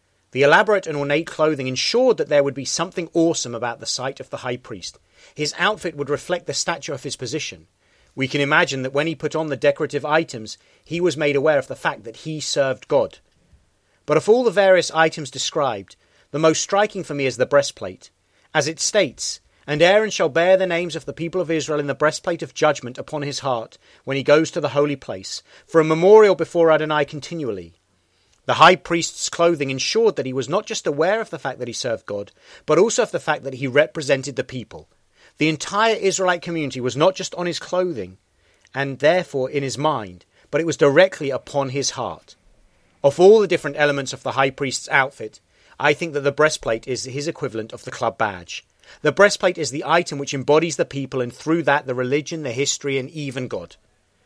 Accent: British